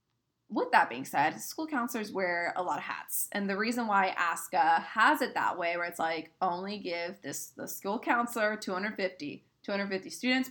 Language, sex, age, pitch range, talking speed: English, female, 20-39, 170-215 Hz, 185 wpm